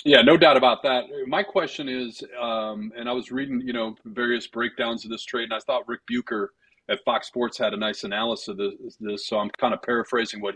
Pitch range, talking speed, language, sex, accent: 110-140 Hz, 235 wpm, English, male, American